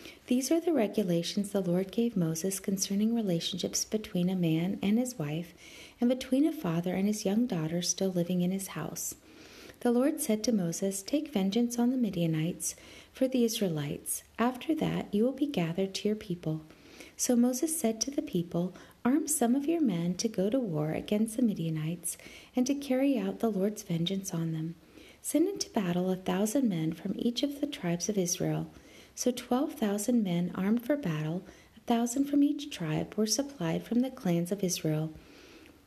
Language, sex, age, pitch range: English, female, 40-59, 175-250 Hz